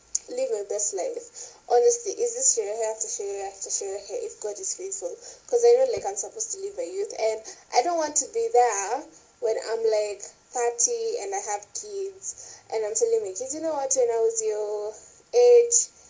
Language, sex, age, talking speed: English, female, 10-29, 225 wpm